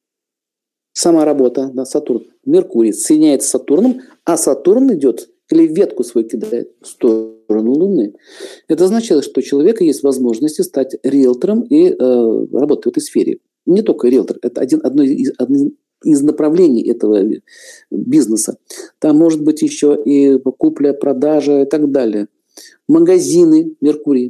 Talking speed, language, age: 140 wpm, Russian, 50-69